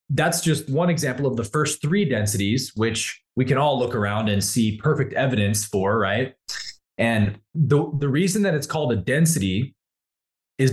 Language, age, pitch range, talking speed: English, 20-39, 110-150 Hz, 175 wpm